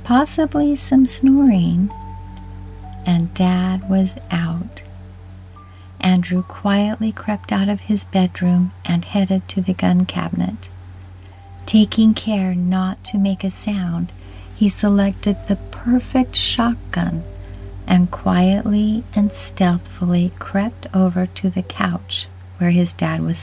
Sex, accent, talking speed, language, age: female, American, 115 wpm, English, 50-69